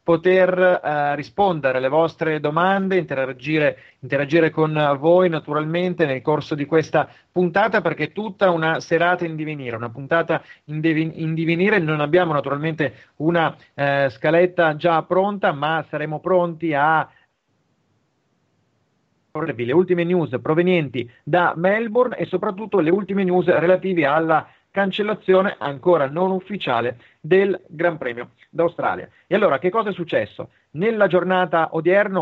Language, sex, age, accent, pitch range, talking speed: Italian, male, 30-49, native, 140-180 Hz, 130 wpm